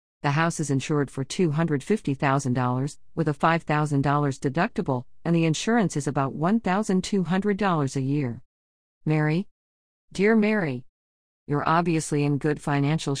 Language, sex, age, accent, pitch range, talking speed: English, female, 50-69, American, 140-190 Hz, 120 wpm